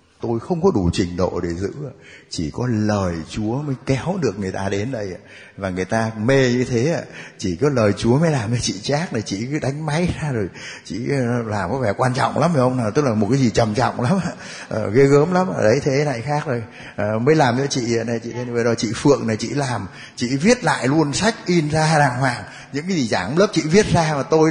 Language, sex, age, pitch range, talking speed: Vietnamese, male, 20-39, 115-155 Hz, 240 wpm